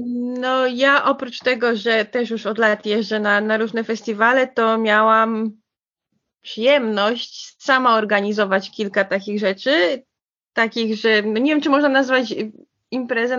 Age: 20-39